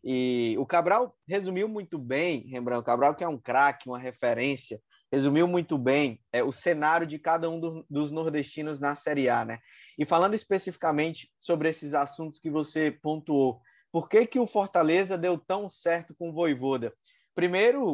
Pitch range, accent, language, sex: 145-185 Hz, Brazilian, Portuguese, male